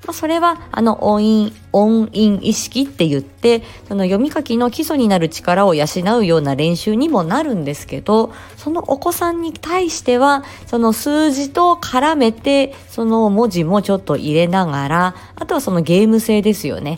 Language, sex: Japanese, female